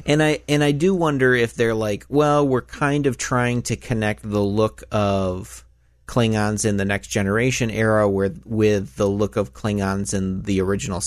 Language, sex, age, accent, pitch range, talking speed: English, male, 30-49, American, 95-110 Hz, 185 wpm